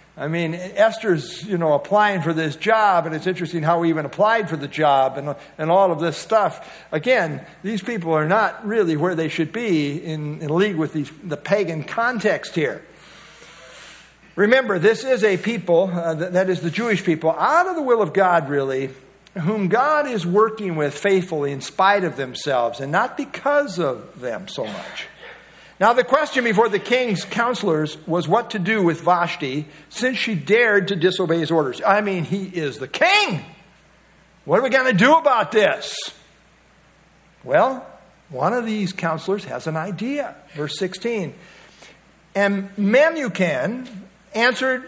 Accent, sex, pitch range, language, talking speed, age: American, male, 165-225 Hz, English, 170 wpm, 60-79